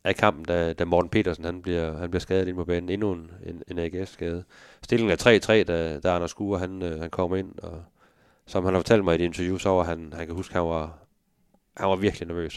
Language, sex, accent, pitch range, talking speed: Danish, male, native, 85-95 Hz, 260 wpm